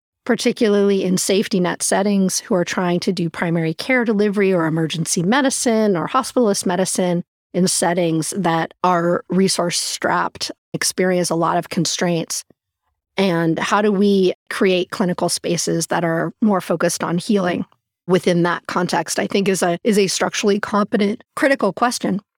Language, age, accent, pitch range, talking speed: English, 30-49, American, 170-205 Hz, 150 wpm